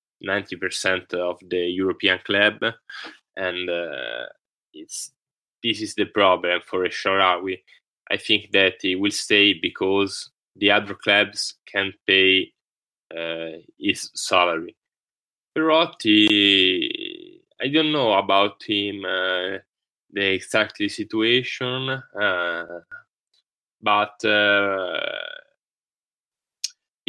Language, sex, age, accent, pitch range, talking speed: English, male, 10-29, Italian, 95-130 Hz, 95 wpm